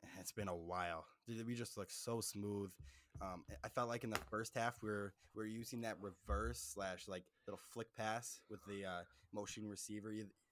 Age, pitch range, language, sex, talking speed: 10-29, 95-110 Hz, English, male, 200 wpm